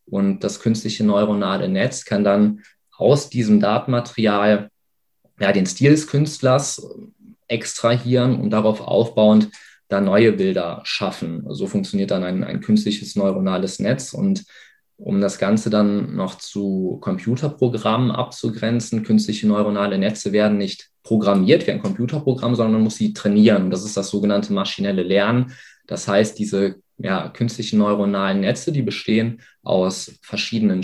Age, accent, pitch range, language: 20-39, German, 100-125 Hz, German